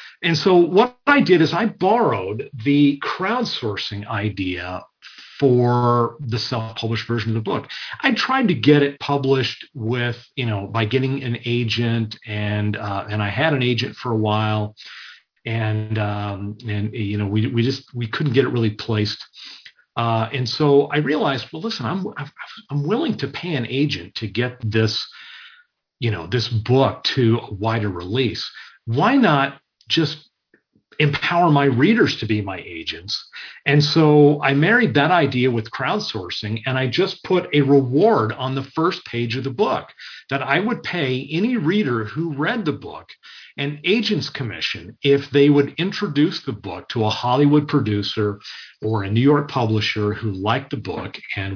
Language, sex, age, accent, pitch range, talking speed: English, male, 40-59, American, 110-145 Hz, 170 wpm